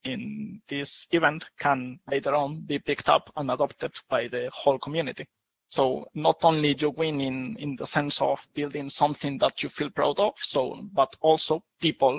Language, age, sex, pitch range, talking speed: English, 20-39, male, 135-155 Hz, 180 wpm